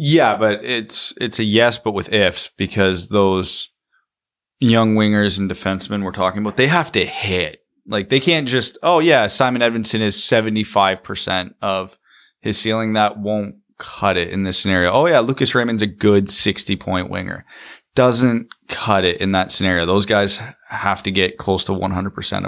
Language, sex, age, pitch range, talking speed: English, male, 20-39, 90-115 Hz, 175 wpm